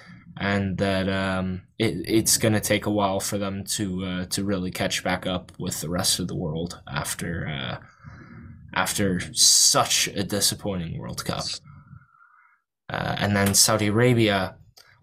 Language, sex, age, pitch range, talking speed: English, male, 10-29, 105-135 Hz, 150 wpm